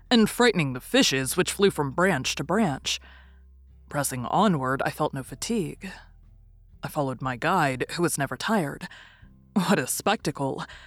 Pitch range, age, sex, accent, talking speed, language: 130-185 Hz, 20-39, female, American, 150 wpm, English